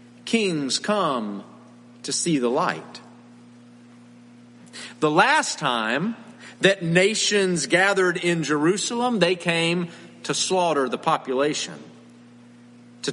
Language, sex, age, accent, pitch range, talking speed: English, male, 50-69, American, 120-195 Hz, 95 wpm